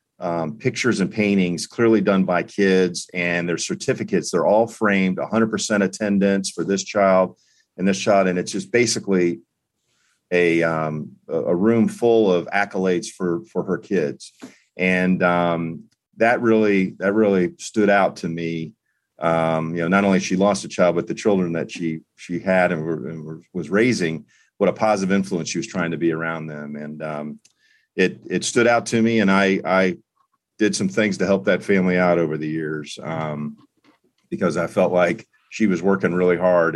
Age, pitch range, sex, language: 40-59, 80-100 Hz, male, English